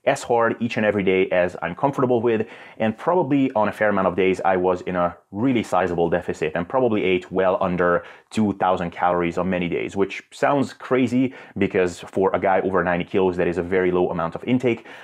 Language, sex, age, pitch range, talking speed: English, male, 30-49, 90-115 Hz, 210 wpm